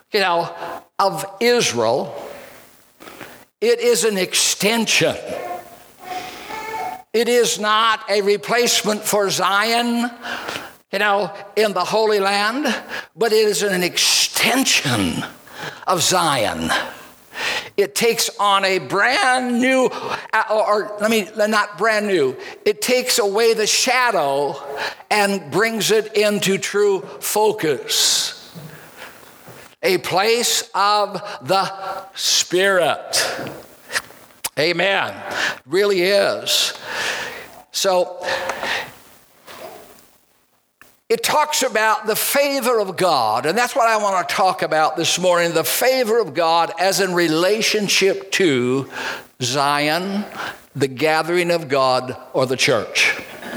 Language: English